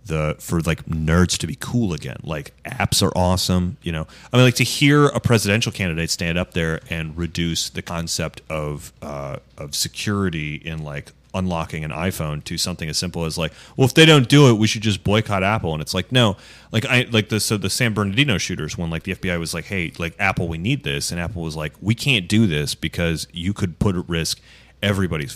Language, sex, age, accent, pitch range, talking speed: English, male, 30-49, American, 85-105 Hz, 225 wpm